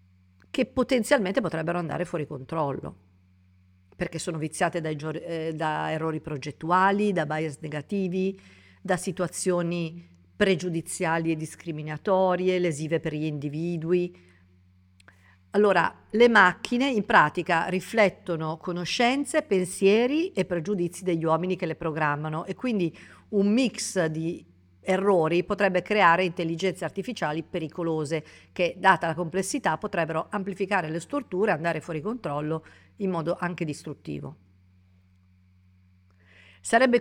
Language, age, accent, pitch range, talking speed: Italian, 50-69, native, 150-190 Hz, 110 wpm